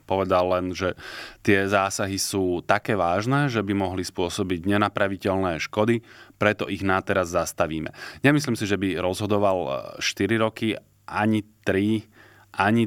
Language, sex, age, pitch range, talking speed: Slovak, male, 30-49, 90-105 Hz, 135 wpm